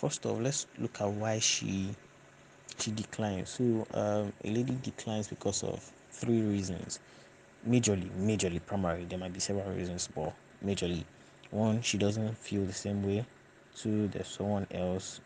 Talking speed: 155 wpm